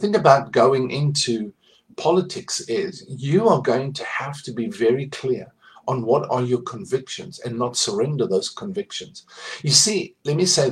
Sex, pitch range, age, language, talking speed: male, 120-170 Hz, 50-69, English, 170 wpm